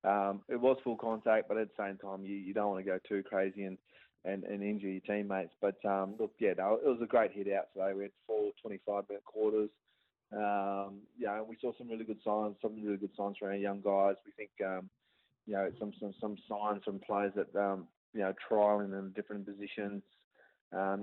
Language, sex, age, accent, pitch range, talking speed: English, male, 20-39, Australian, 95-105 Hz, 225 wpm